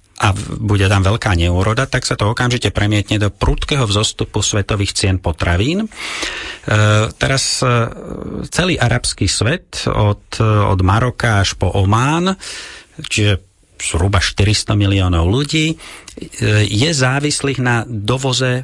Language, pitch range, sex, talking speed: Slovak, 100-125 Hz, male, 120 wpm